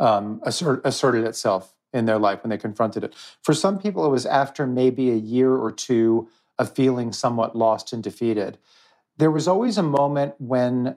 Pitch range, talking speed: 115-140 Hz, 175 wpm